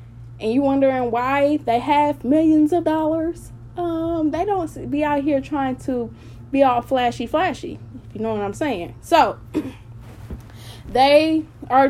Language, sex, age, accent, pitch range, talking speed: English, female, 10-29, American, 185-255 Hz, 150 wpm